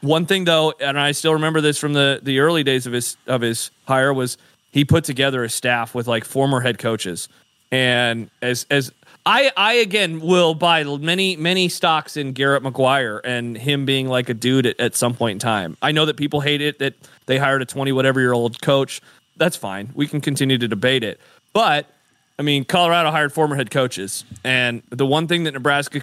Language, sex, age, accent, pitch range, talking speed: English, male, 30-49, American, 130-165 Hz, 210 wpm